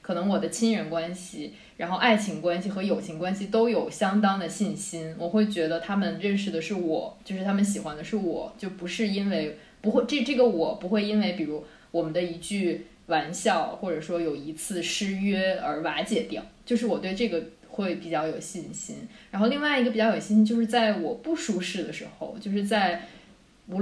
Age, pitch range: 20-39, 170-215 Hz